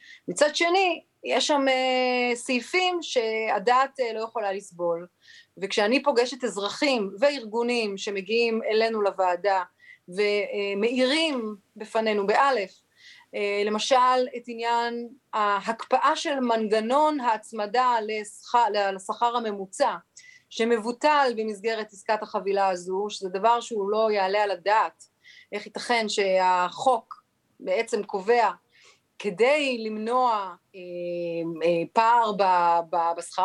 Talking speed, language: 95 wpm, Hebrew